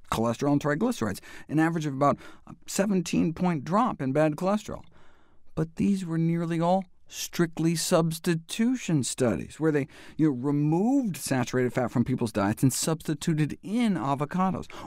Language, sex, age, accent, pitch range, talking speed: English, male, 50-69, American, 115-170 Hz, 135 wpm